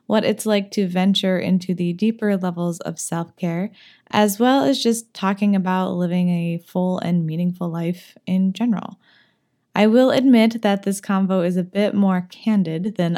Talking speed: 170 wpm